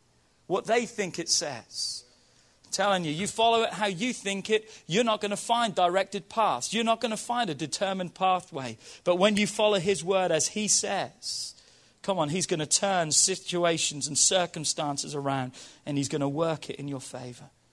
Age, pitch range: 40-59, 145-215 Hz